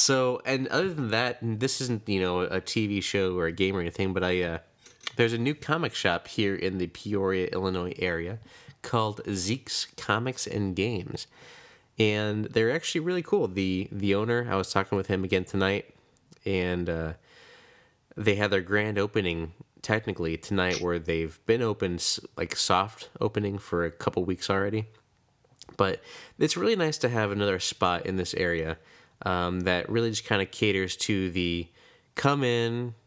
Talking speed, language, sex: 170 wpm, English, male